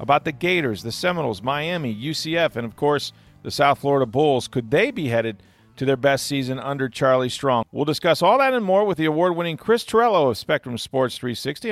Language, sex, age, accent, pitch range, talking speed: English, male, 40-59, American, 130-175 Hz, 205 wpm